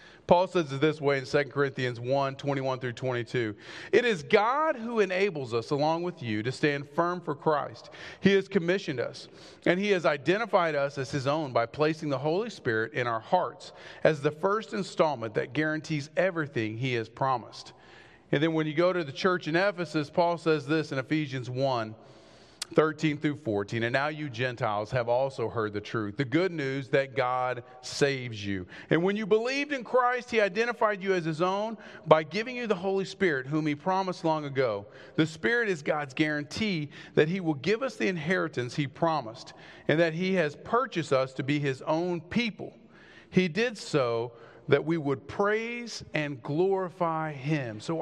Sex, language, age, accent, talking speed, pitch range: male, English, 40-59, American, 185 wpm, 135-195 Hz